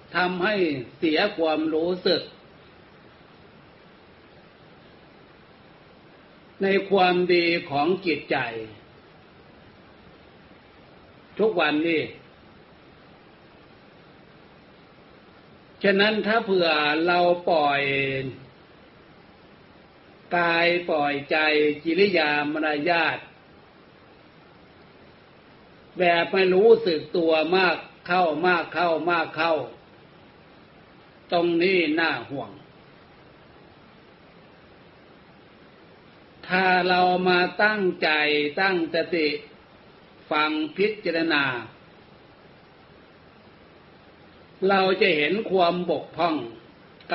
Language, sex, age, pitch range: Thai, male, 60-79, 150-180 Hz